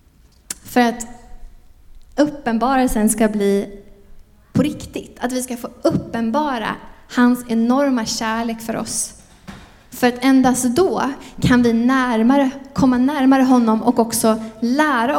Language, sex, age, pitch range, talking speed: Swedish, female, 20-39, 215-260 Hz, 115 wpm